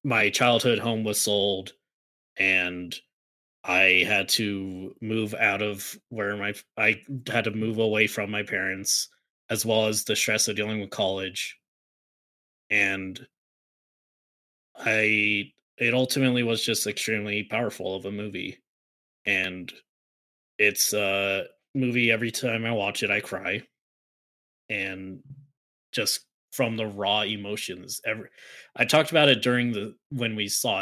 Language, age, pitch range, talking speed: English, 20-39, 95-115 Hz, 135 wpm